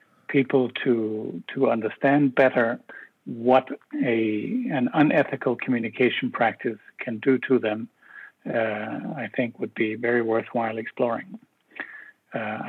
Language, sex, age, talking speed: English, male, 60-79, 115 wpm